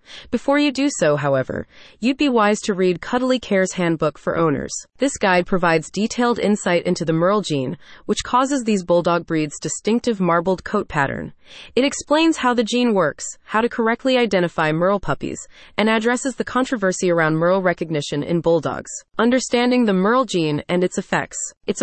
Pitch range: 170-230 Hz